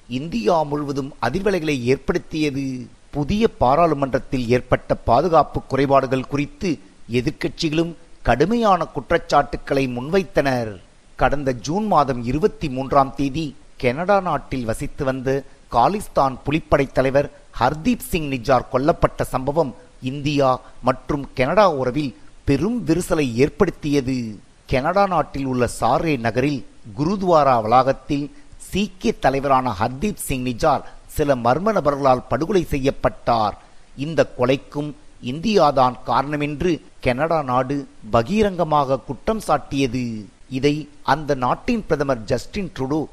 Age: 50-69